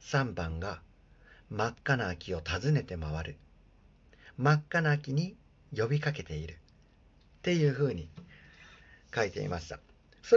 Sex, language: male, Japanese